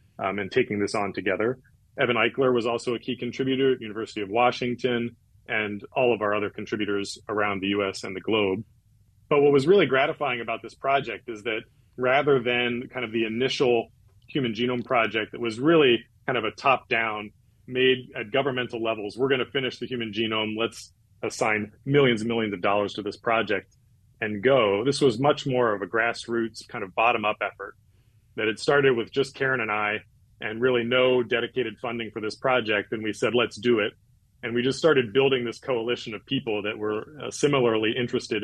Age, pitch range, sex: 30-49, 110-125 Hz, male